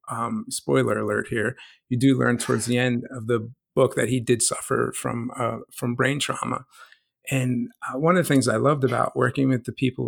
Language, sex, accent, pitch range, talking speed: English, male, American, 120-135 Hz, 210 wpm